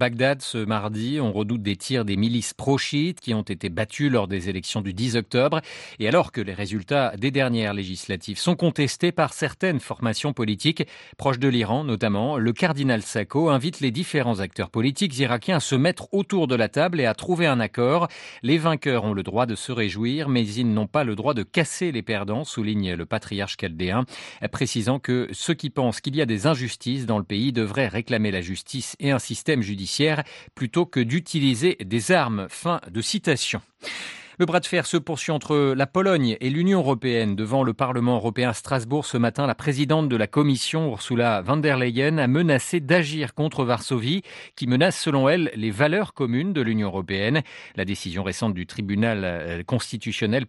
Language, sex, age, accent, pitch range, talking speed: French, male, 40-59, French, 110-150 Hz, 190 wpm